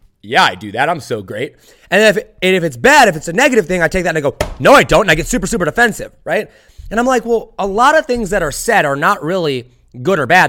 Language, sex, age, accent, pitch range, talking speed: English, male, 20-39, American, 165-225 Hz, 285 wpm